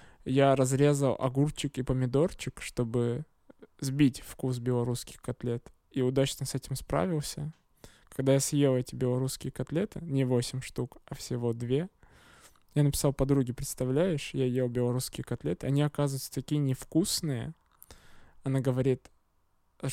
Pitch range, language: 125-145 Hz, Russian